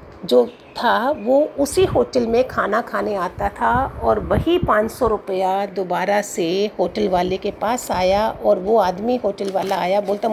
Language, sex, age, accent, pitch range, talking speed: Hindi, female, 50-69, native, 205-255 Hz, 165 wpm